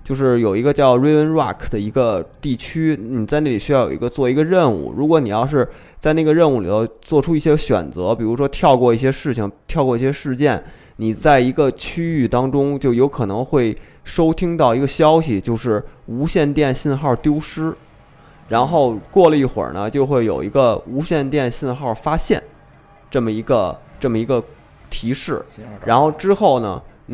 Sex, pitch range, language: male, 115-150 Hz, Chinese